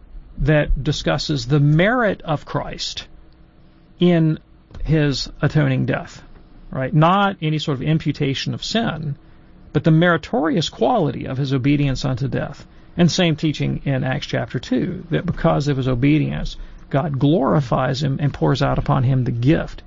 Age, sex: 40-59, male